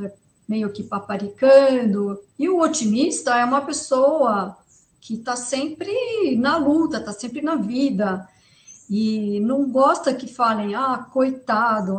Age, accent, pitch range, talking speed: 50-69, Brazilian, 200-285 Hz, 125 wpm